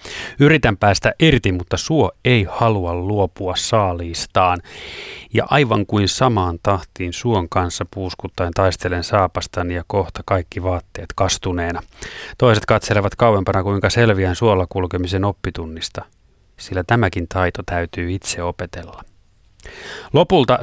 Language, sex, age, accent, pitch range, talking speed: Finnish, male, 30-49, native, 90-115 Hz, 115 wpm